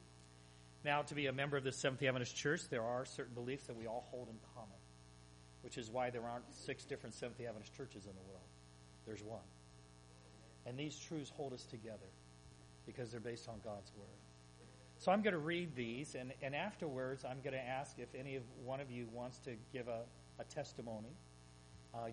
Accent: American